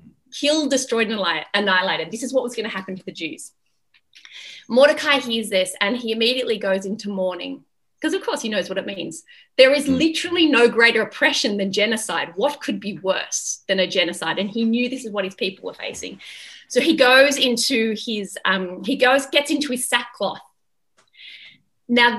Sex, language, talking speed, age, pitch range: female, English, 185 wpm, 20-39, 205-265 Hz